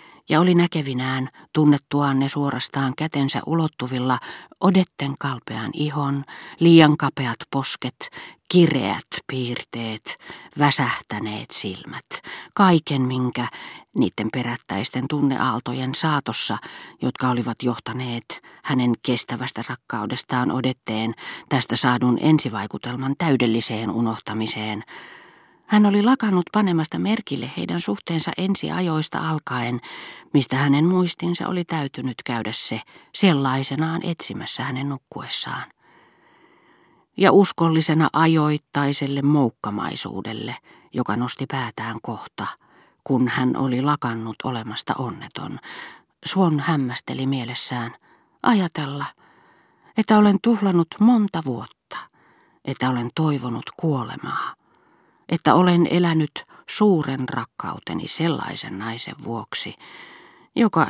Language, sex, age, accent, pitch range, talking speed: Finnish, female, 40-59, native, 125-165 Hz, 90 wpm